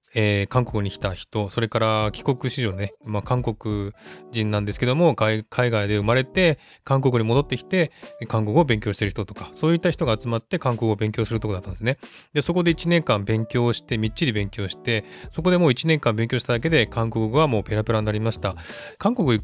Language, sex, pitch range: Japanese, male, 105-140 Hz